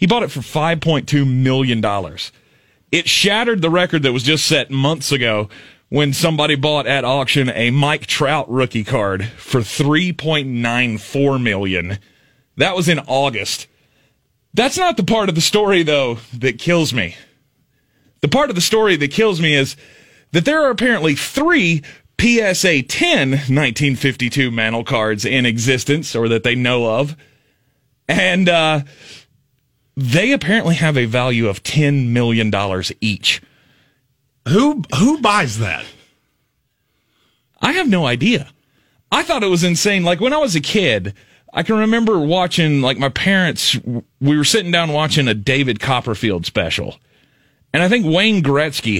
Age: 30-49